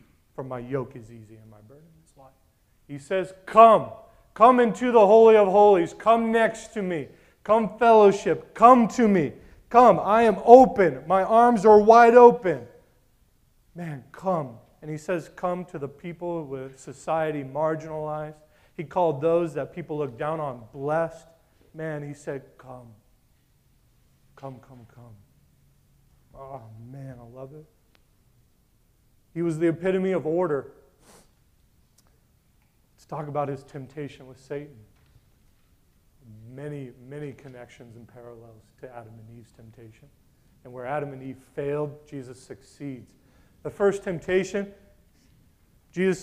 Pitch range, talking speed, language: 125-185 Hz, 135 wpm, English